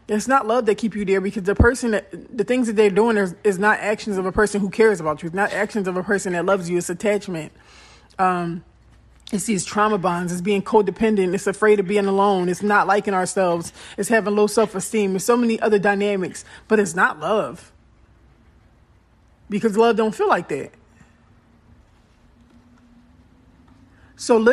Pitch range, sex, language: 195-225 Hz, male, English